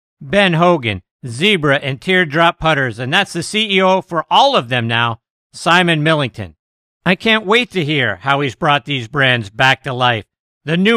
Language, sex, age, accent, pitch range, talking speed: English, male, 50-69, American, 135-185 Hz, 175 wpm